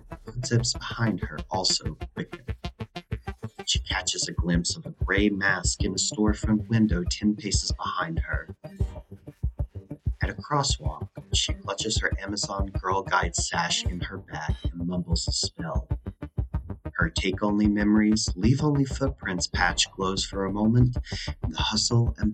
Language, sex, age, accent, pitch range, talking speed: English, male, 40-59, American, 90-115 Hz, 145 wpm